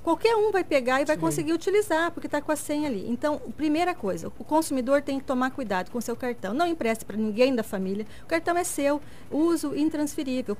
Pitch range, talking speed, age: 240-315 Hz, 220 wpm, 40-59